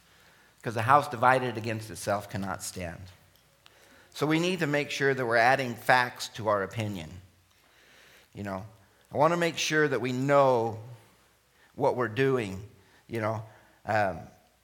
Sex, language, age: male, English, 50-69